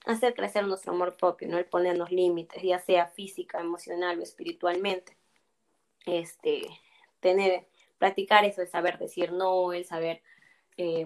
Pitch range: 175-200 Hz